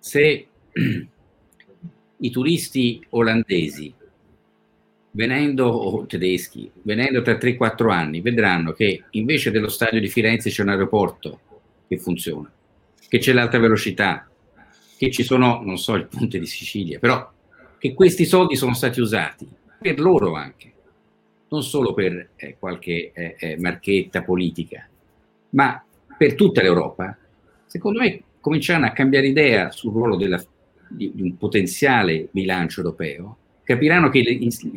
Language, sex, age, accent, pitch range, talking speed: Italian, male, 50-69, native, 90-130 Hz, 135 wpm